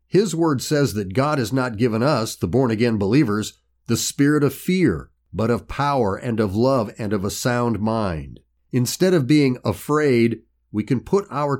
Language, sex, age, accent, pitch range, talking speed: English, male, 50-69, American, 105-140 Hz, 180 wpm